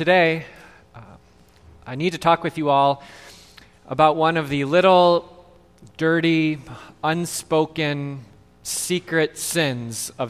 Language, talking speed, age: English, 110 wpm, 20-39